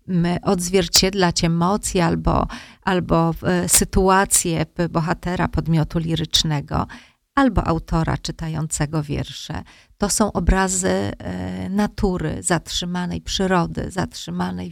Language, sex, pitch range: Polish, female, 165-195 Hz